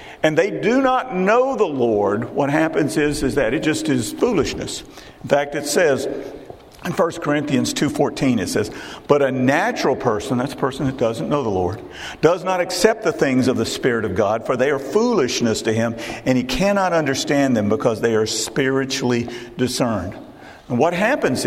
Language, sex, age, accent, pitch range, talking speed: English, male, 50-69, American, 120-185 Hz, 185 wpm